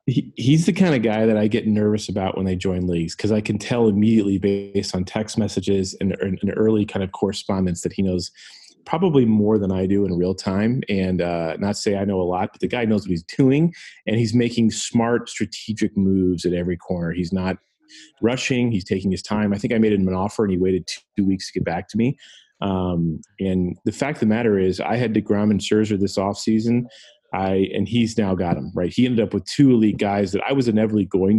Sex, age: male, 30-49